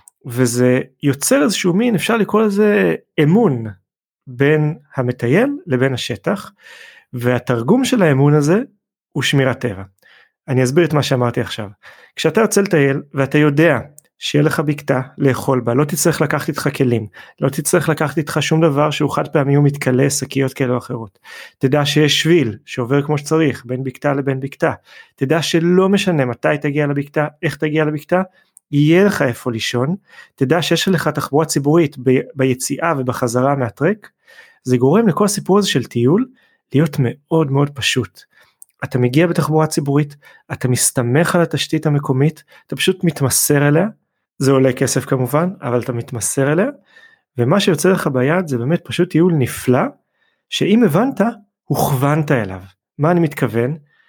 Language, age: Hebrew, 30-49